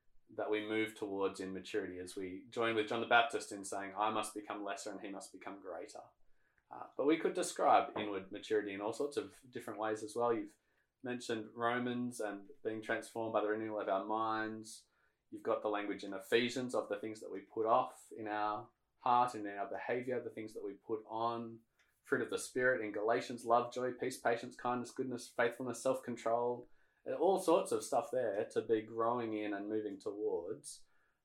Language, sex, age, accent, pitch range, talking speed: English, male, 20-39, Australian, 105-125 Hz, 195 wpm